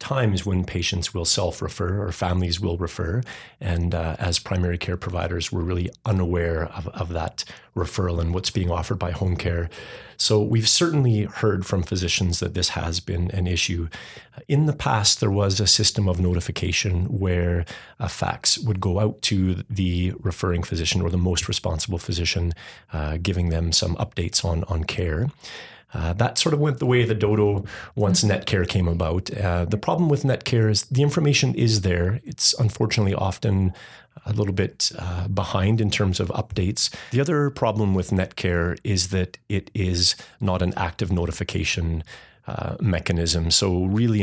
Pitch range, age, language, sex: 85-105 Hz, 30-49, English, male